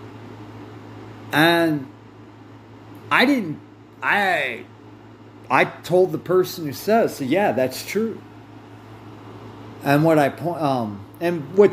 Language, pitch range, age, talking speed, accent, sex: English, 105-140 Hz, 40-59, 105 wpm, American, male